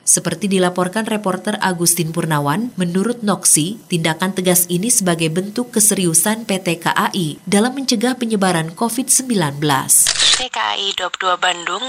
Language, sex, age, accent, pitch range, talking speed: Indonesian, female, 20-39, native, 170-210 Hz, 110 wpm